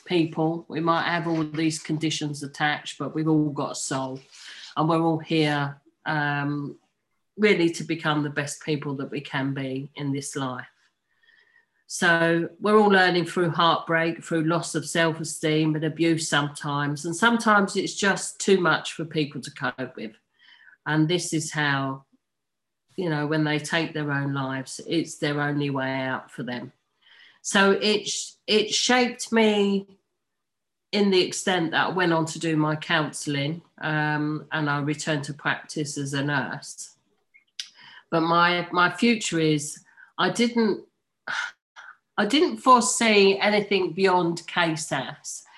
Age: 40-59